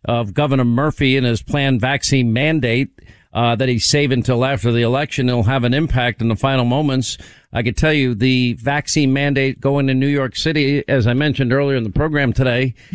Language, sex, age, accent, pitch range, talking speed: English, male, 50-69, American, 125-160 Hz, 205 wpm